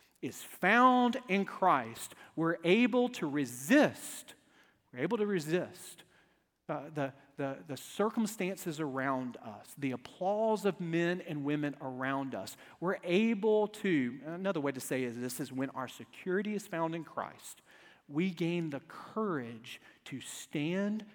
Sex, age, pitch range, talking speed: male, 40-59, 155-220 Hz, 140 wpm